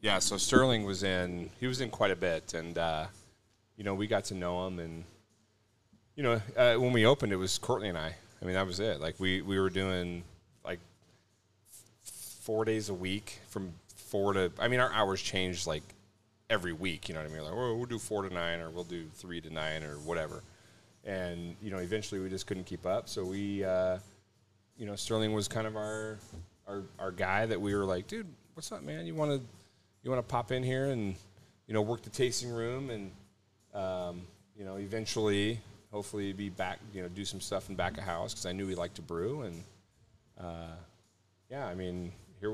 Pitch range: 90-110 Hz